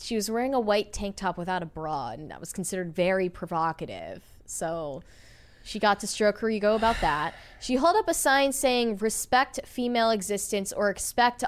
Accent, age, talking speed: American, 10-29, 190 wpm